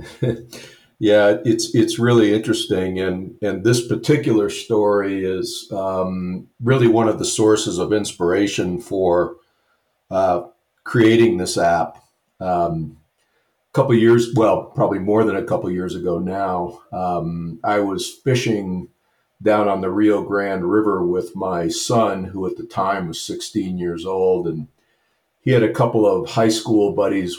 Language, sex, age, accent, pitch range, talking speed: English, male, 50-69, American, 95-115 Hz, 150 wpm